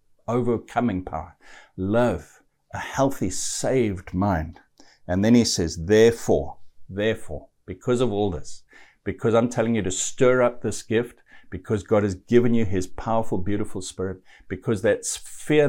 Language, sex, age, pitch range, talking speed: English, male, 60-79, 90-120 Hz, 145 wpm